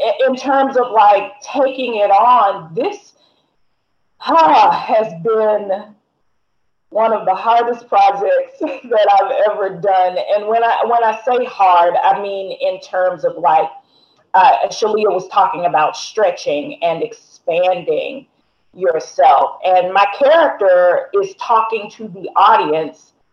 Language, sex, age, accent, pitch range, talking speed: English, female, 40-59, American, 200-275 Hz, 130 wpm